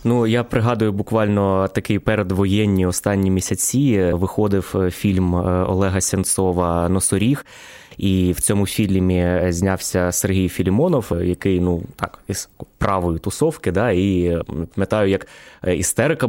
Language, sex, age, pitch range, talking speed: Ukrainian, male, 20-39, 95-115 Hz, 115 wpm